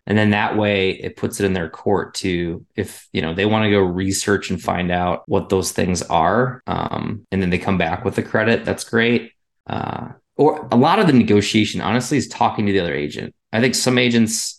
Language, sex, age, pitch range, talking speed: English, male, 20-39, 95-110 Hz, 225 wpm